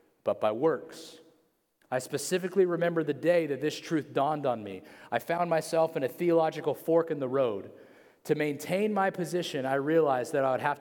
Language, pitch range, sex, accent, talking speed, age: English, 145-195 Hz, male, American, 190 wpm, 30-49